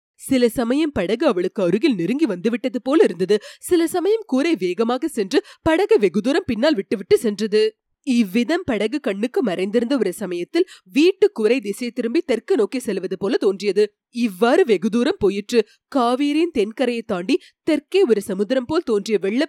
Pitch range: 200-270 Hz